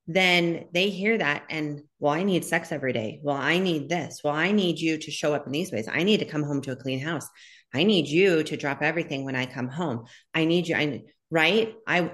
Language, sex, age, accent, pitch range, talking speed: English, female, 30-49, American, 140-170 Hz, 245 wpm